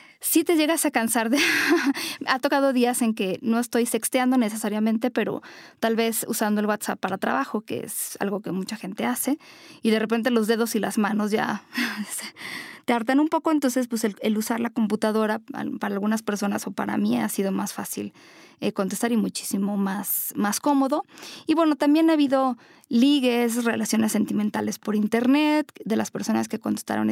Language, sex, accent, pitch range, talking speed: Spanish, female, Mexican, 215-275 Hz, 180 wpm